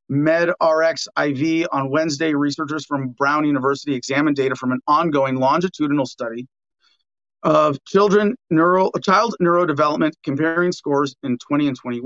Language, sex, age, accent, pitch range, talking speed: English, male, 40-59, American, 135-170 Hz, 120 wpm